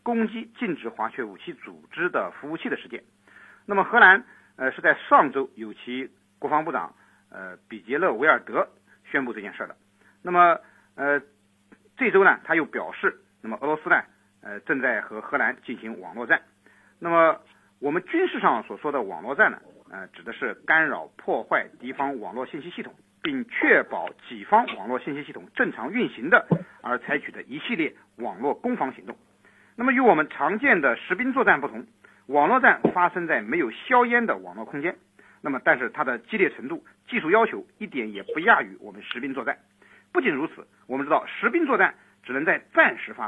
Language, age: Chinese, 50-69